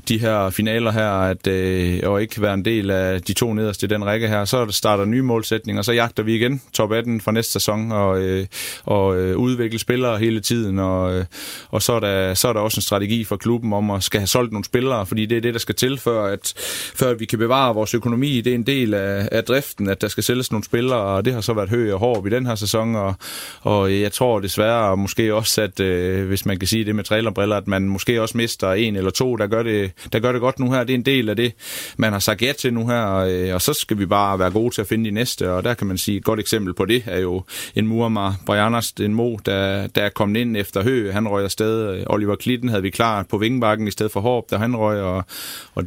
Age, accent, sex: 30-49, native, male